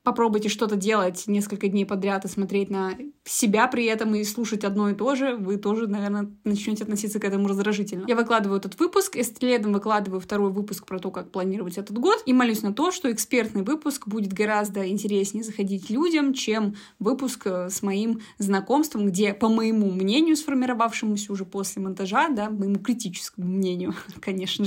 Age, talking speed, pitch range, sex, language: 20-39, 175 wpm, 195-230 Hz, female, Russian